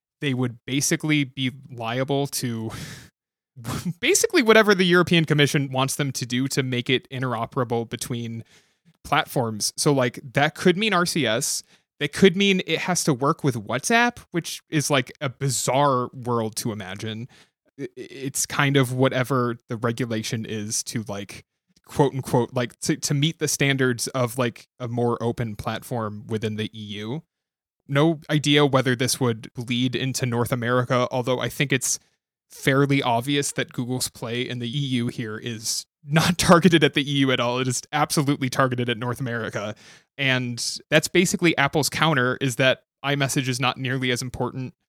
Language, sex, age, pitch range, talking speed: English, male, 20-39, 120-145 Hz, 160 wpm